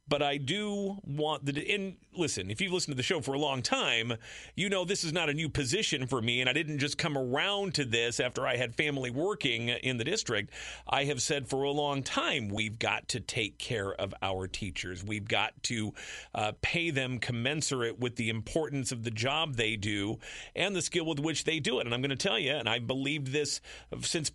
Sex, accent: male, American